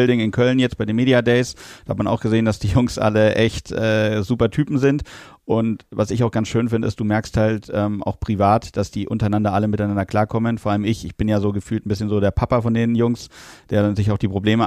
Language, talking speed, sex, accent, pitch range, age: German, 260 wpm, male, German, 105-120 Hz, 30-49